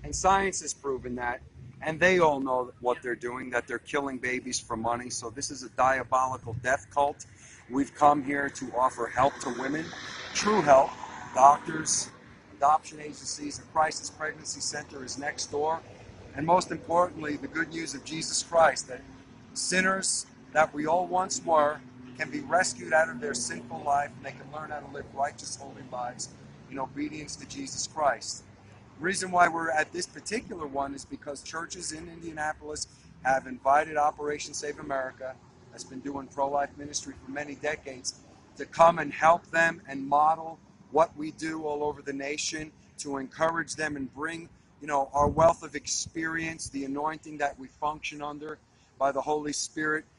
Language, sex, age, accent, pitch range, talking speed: English, male, 50-69, American, 130-160 Hz, 175 wpm